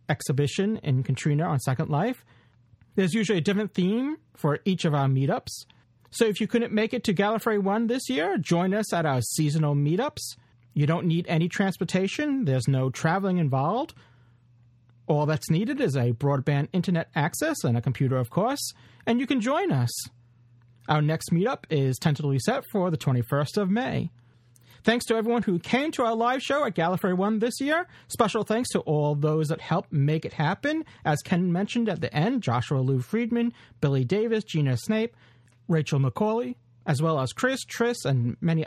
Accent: American